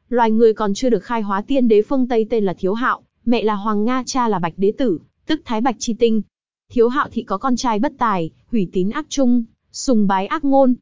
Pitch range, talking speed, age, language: 200-250 Hz, 250 wpm, 20-39, Vietnamese